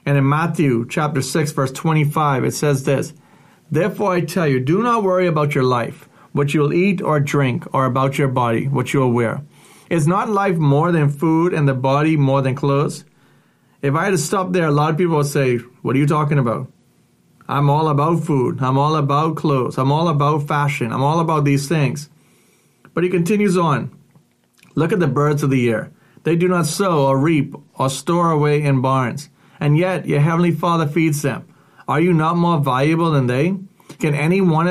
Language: English